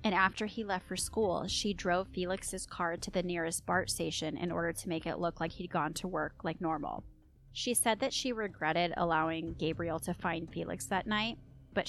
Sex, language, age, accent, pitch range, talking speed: female, English, 20-39, American, 165-195 Hz, 205 wpm